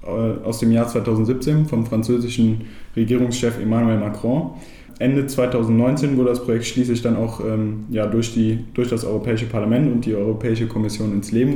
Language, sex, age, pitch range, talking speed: German, male, 20-39, 110-125 Hz, 160 wpm